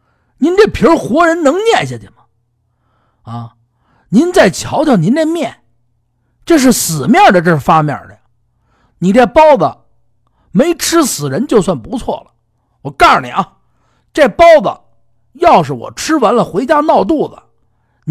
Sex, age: male, 50-69